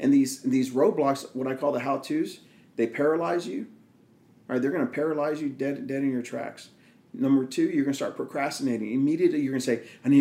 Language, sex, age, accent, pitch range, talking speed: English, male, 40-59, American, 130-190 Hz, 215 wpm